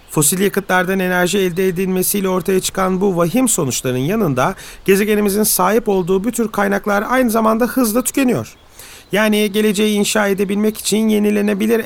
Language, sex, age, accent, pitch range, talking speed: Turkish, male, 40-59, native, 160-205 Hz, 135 wpm